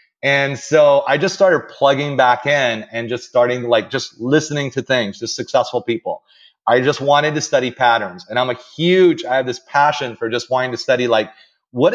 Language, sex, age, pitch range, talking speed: English, male, 30-49, 120-150 Hz, 200 wpm